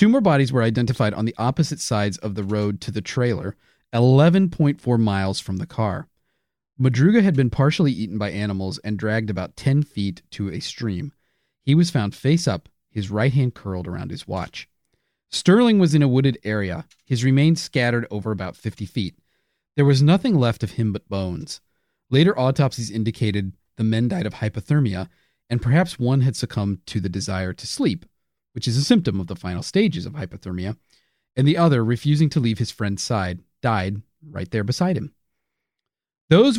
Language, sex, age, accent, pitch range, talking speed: English, male, 30-49, American, 100-145 Hz, 180 wpm